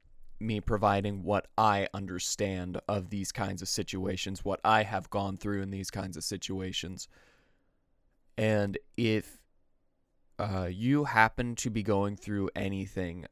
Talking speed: 135 wpm